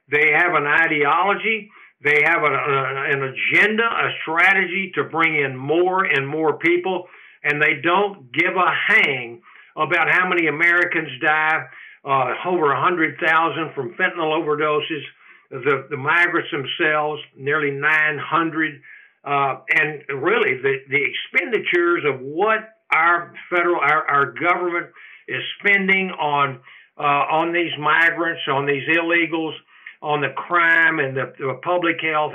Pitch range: 150-180 Hz